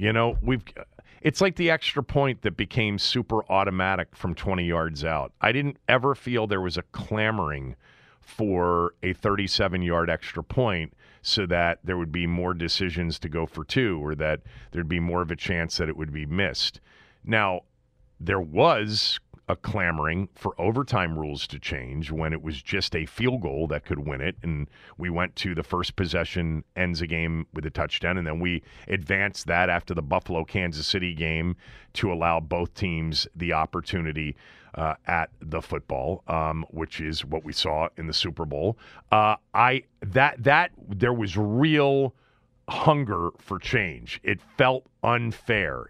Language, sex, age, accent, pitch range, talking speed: English, male, 40-59, American, 80-110 Hz, 170 wpm